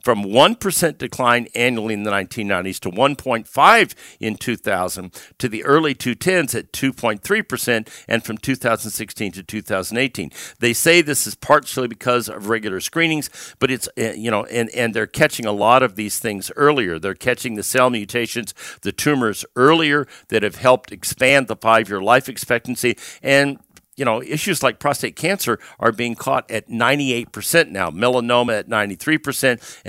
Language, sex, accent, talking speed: English, male, American, 155 wpm